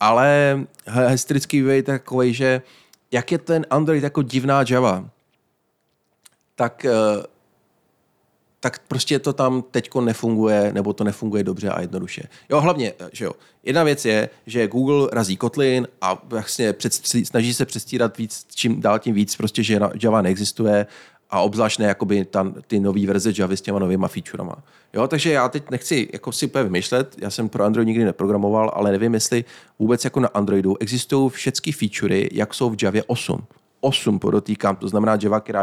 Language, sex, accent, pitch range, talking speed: Czech, male, native, 105-130 Hz, 165 wpm